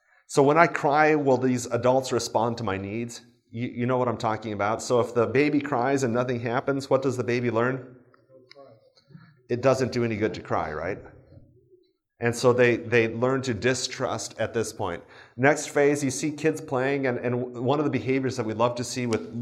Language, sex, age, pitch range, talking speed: English, male, 30-49, 115-145 Hz, 205 wpm